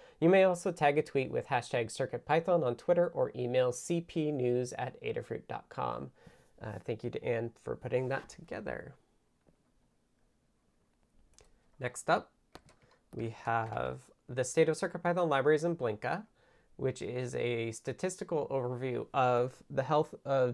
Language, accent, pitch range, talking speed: English, American, 125-190 Hz, 130 wpm